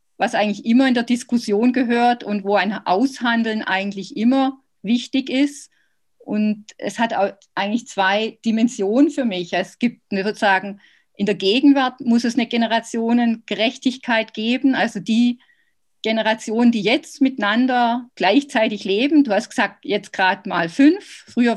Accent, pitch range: German, 210-265 Hz